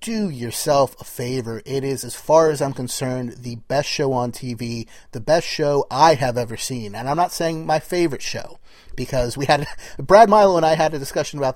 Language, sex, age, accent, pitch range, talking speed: English, male, 30-49, American, 125-155 Hz, 215 wpm